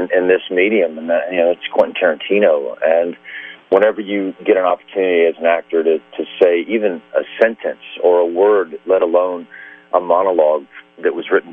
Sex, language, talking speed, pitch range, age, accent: male, English, 185 wpm, 85-110 Hz, 40-59, American